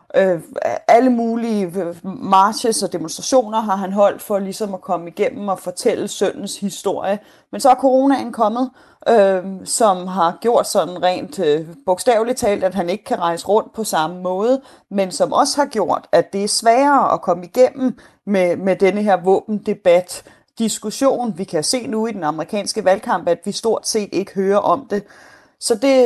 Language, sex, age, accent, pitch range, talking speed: Danish, female, 30-49, native, 190-250 Hz, 175 wpm